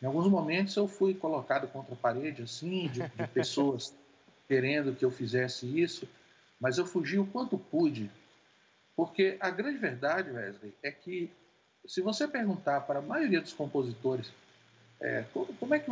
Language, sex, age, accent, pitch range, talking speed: Portuguese, male, 50-69, Brazilian, 135-200 Hz, 160 wpm